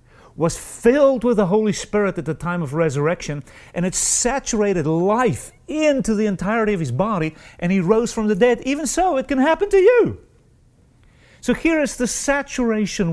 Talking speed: 180 wpm